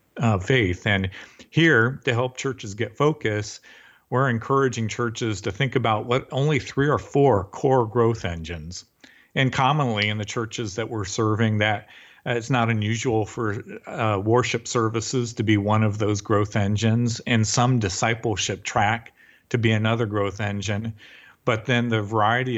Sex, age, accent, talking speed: male, 40-59, American, 160 wpm